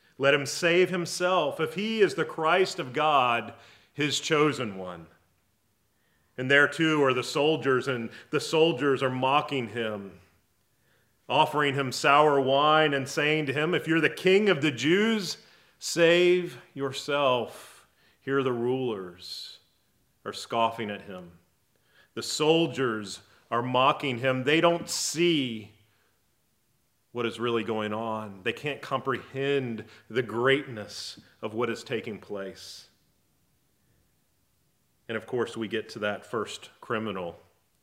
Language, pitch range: English, 110-145 Hz